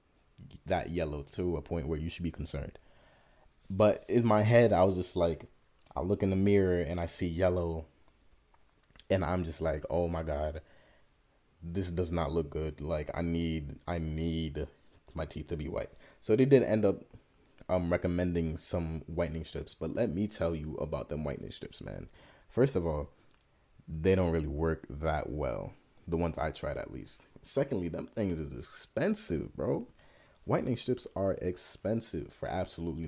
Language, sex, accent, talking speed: English, male, American, 175 wpm